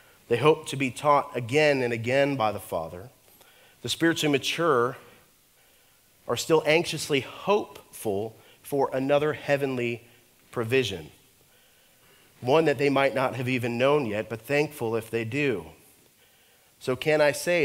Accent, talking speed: American, 135 wpm